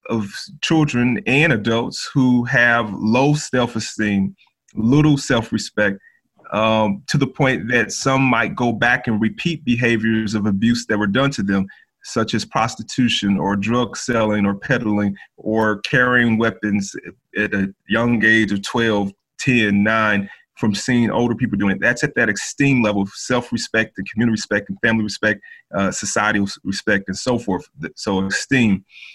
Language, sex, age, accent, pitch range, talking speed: English, male, 30-49, American, 100-120 Hz, 155 wpm